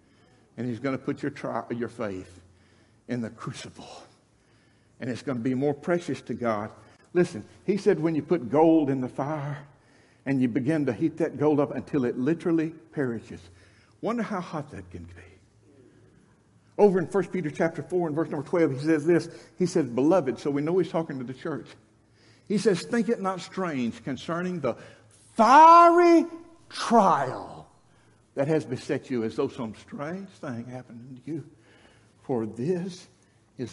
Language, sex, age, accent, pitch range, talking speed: English, male, 60-79, American, 110-155 Hz, 175 wpm